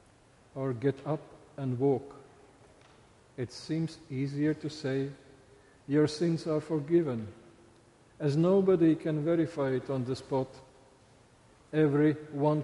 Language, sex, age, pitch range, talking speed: English, male, 50-69, 130-160 Hz, 110 wpm